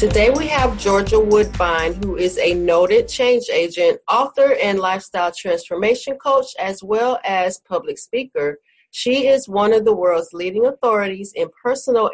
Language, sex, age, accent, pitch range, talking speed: English, female, 40-59, American, 190-305 Hz, 155 wpm